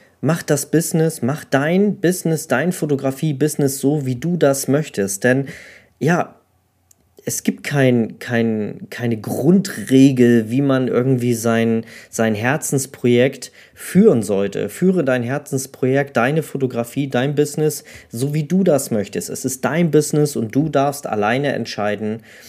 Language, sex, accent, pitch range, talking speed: German, male, German, 115-140 Hz, 130 wpm